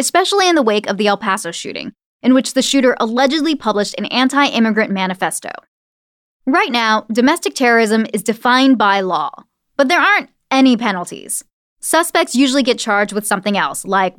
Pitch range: 205-275 Hz